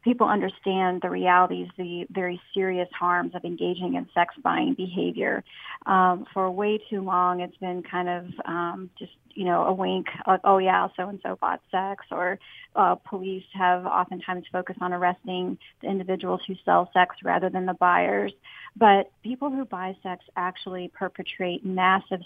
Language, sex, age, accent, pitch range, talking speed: English, female, 40-59, American, 180-195 Hz, 160 wpm